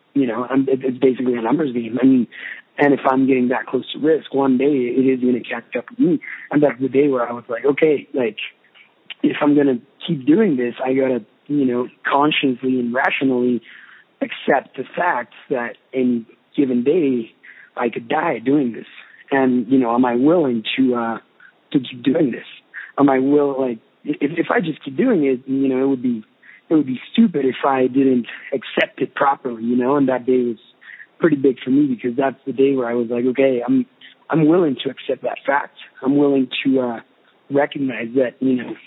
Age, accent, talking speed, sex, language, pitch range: 30-49, American, 215 wpm, male, English, 125-145 Hz